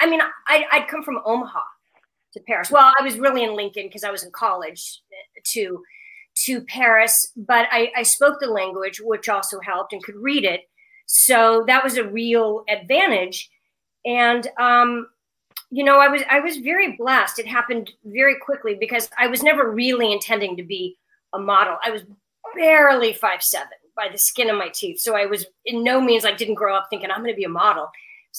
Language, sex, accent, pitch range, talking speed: English, female, American, 220-285 Hz, 195 wpm